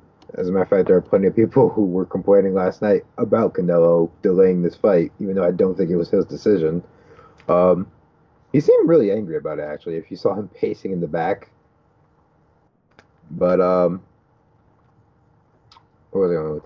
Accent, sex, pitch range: American, male, 95-155 Hz